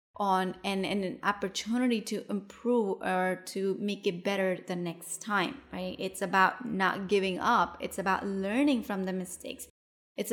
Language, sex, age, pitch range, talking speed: English, female, 20-39, 190-230 Hz, 165 wpm